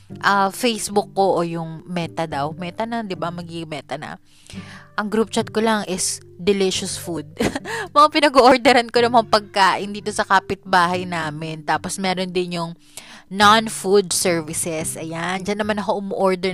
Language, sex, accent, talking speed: English, female, Filipino, 155 wpm